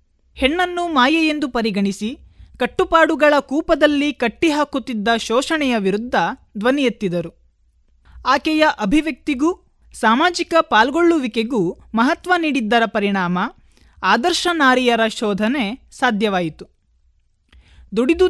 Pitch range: 215-300 Hz